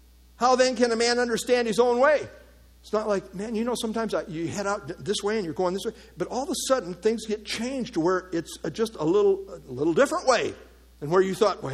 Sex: male